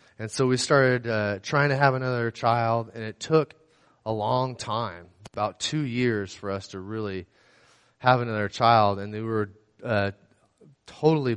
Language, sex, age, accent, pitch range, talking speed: English, male, 20-39, American, 105-135 Hz, 165 wpm